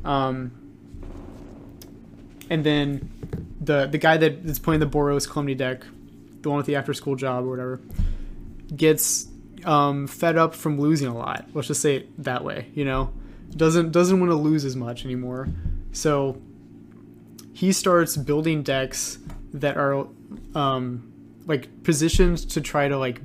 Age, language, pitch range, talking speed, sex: 20-39, English, 130-155 Hz, 155 wpm, male